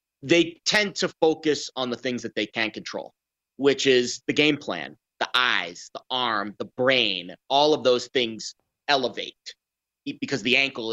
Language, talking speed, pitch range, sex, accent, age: English, 165 wpm, 115-155 Hz, male, American, 30-49